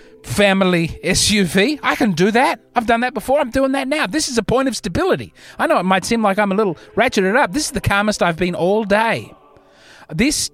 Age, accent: 30-49, Australian